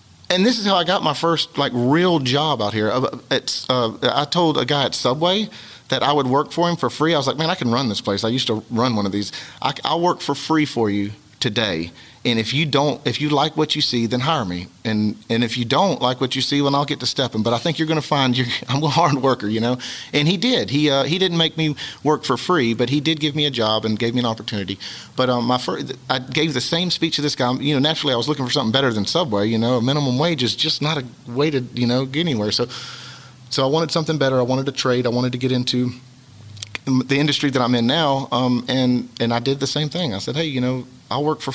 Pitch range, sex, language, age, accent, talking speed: 115-145 Hz, male, English, 40-59, American, 275 wpm